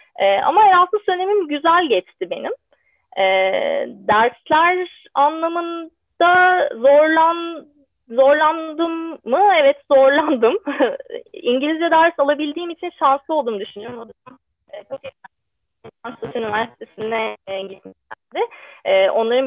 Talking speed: 85 wpm